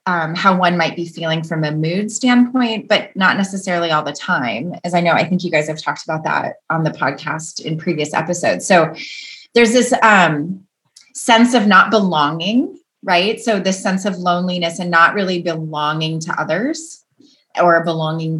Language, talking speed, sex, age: English, 180 wpm, female, 30-49